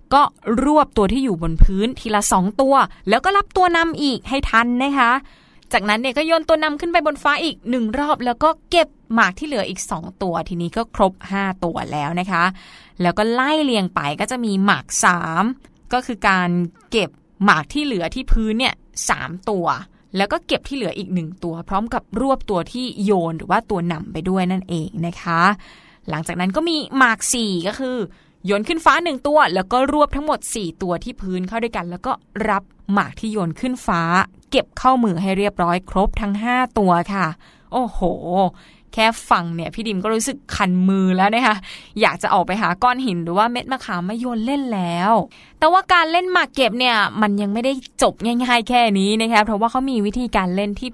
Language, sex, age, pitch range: Thai, female, 20-39, 185-255 Hz